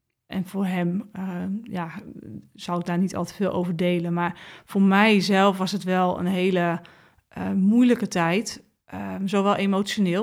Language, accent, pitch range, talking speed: Dutch, Dutch, 175-200 Hz, 165 wpm